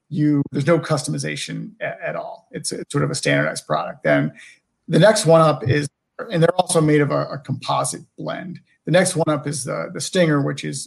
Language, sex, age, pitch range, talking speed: English, male, 40-59, 140-165 Hz, 210 wpm